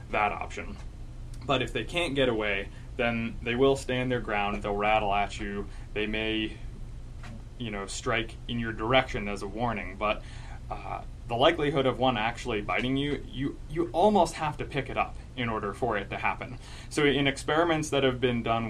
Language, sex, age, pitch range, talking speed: English, male, 20-39, 105-130 Hz, 190 wpm